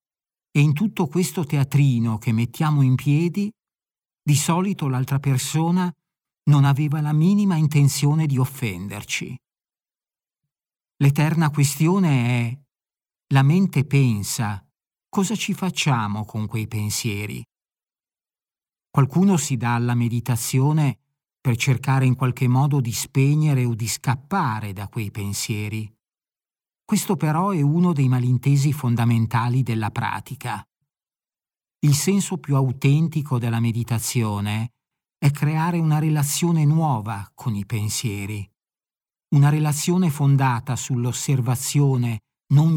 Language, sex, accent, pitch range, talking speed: Italian, male, native, 120-155 Hz, 110 wpm